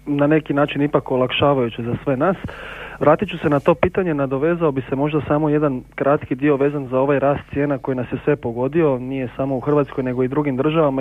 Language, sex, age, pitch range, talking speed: Croatian, male, 30-49, 130-155 Hz, 220 wpm